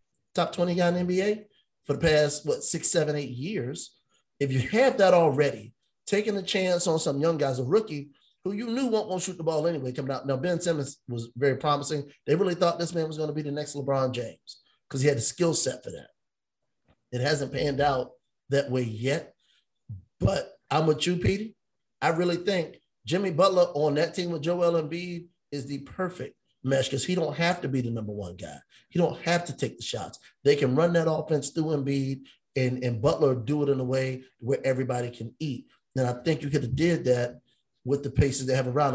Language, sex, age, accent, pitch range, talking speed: English, male, 30-49, American, 130-165 Hz, 220 wpm